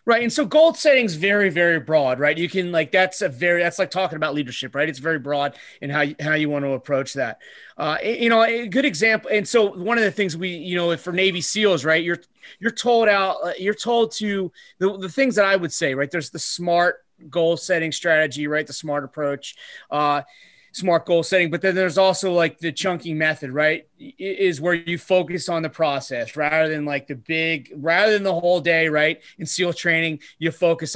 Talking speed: 225 wpm